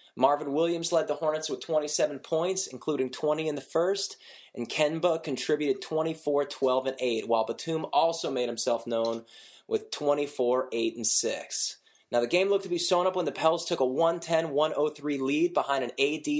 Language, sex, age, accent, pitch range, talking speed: English, male, 20-39, American, 125-160 Hz, 185 wpm